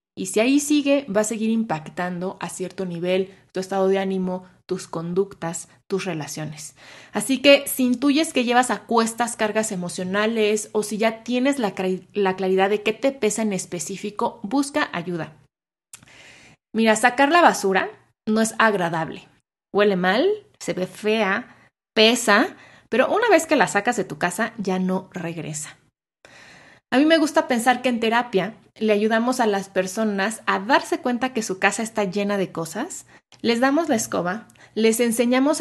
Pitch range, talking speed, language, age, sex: 185-240 Hz, 165 wpm, Spanish, 20-39, female